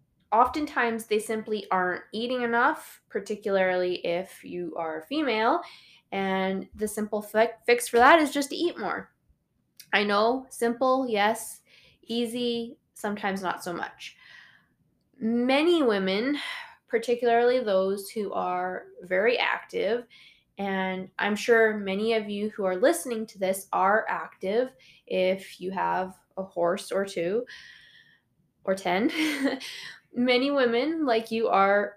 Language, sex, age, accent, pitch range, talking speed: English, female, 10-29, American, 190-240 Hz, 125 wpm